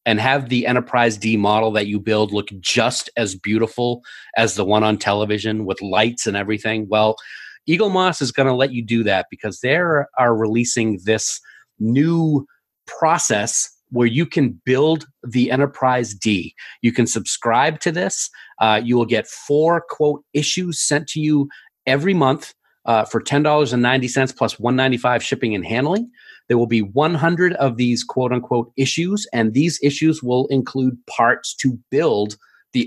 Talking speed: 160 wpm